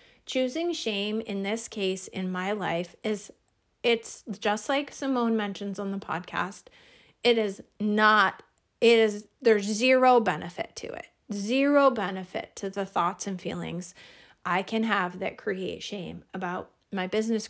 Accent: American